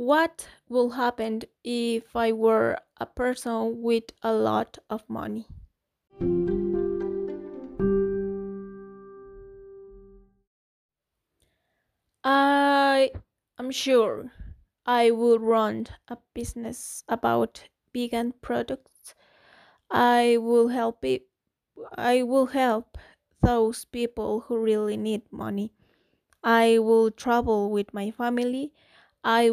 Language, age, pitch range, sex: Spanish, 20-39, 215-250 Hz, female